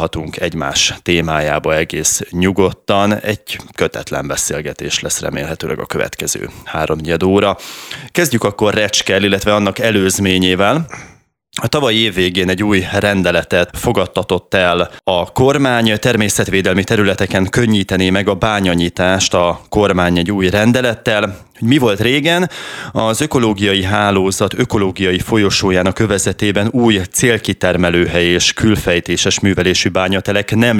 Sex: male